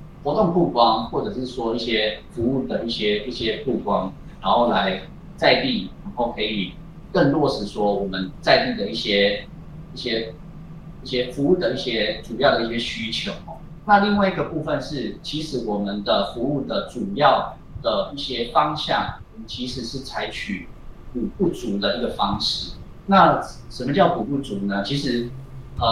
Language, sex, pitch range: Chinese, male, 115-165 Hz